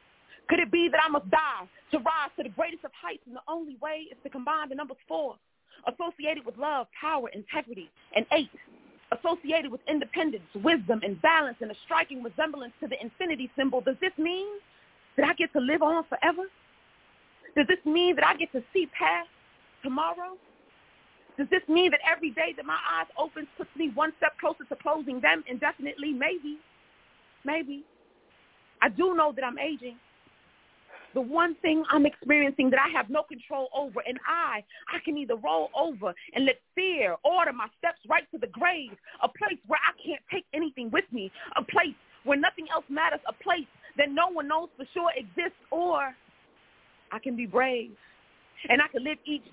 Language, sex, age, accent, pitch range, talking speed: English, female, 30-49, American, 260-320 Hz, 185 wpm